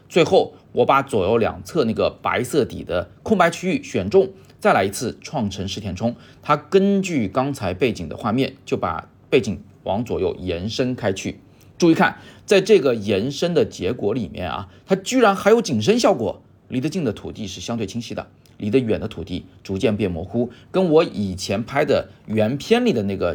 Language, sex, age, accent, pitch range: Chinese, male, 30-49, native, 100-145 Hz